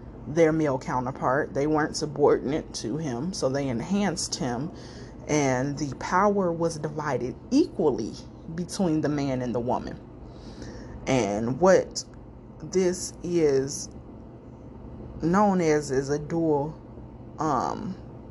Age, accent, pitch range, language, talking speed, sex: 20-39, American, 125-165 Hz, English, 110 wpm, female